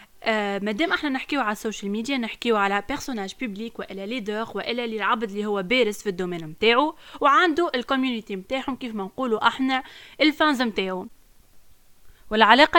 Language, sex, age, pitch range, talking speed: Arabic, female, 20-39, 205-270 Hz, 150 wpm